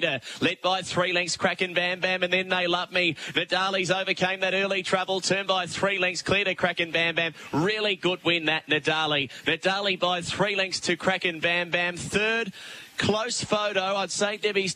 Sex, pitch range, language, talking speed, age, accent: male, 155-185 Hz, English, 185 wpm, 20-39, Australian